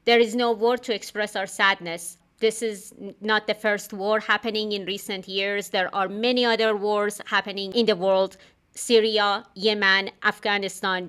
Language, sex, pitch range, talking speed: English, female, 195-235 Hz, 160 wpm